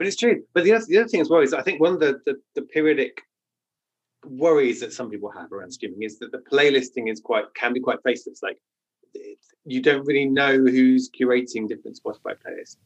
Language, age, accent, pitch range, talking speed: English, 30-49, British, 120-165 Hz, 225 wpm